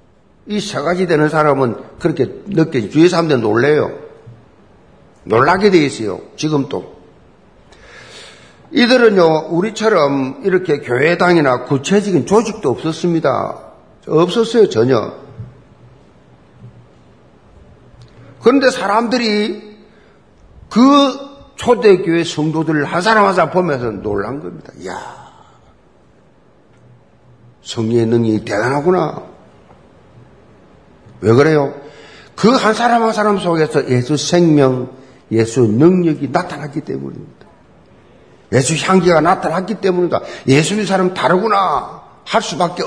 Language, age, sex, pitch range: Korean, 50-69, male, 125-195 Hz